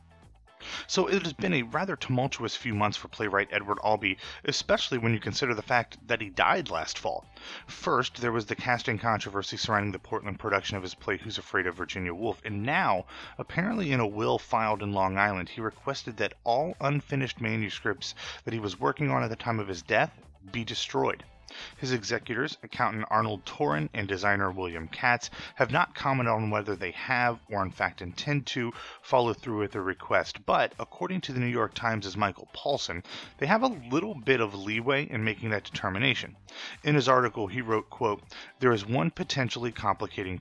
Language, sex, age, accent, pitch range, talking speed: English, male, 30-49, American, 100-125 Hz, 190 wpm